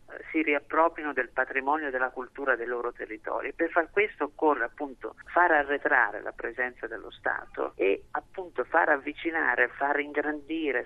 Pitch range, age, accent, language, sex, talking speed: 140-180 Hz, 50-69, native, Italian, male, 150 wpm